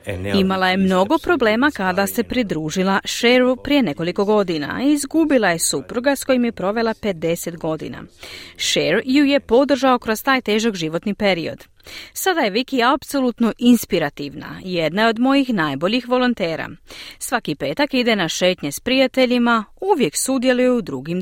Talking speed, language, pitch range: 145 wpm, Croatian, 185-275 Hz